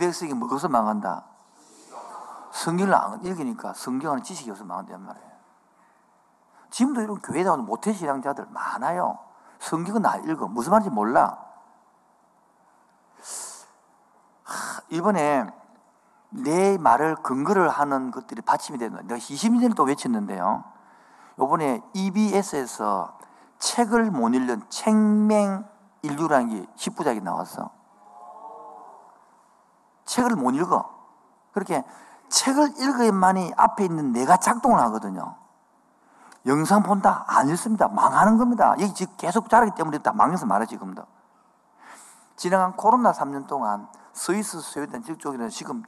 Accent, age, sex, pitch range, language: native, 50-69, male, 150-230 Hz, Korean